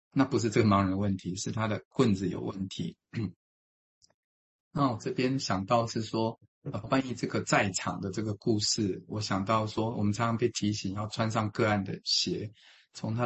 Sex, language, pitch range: male, Chinese, 100-115 Hz